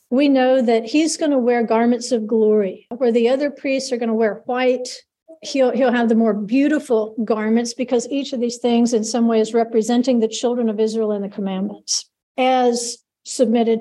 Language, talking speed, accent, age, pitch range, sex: English, 195 wpm, American, 50-69, 225-260 Hz, female